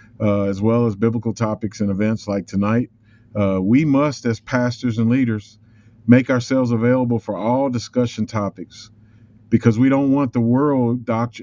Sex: male